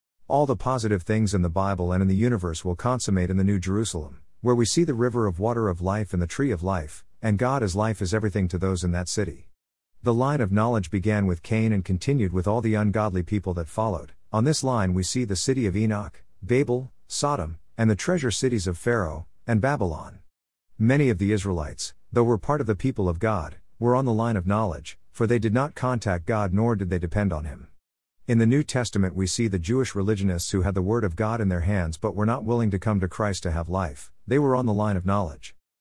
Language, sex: English, male